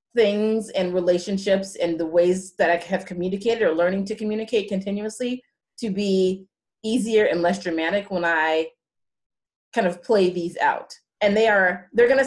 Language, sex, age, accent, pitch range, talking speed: English, female, 30-49, American, 175-215 Hz, 160 wpm